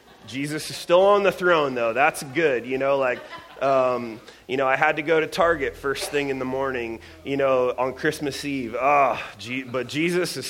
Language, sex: English, male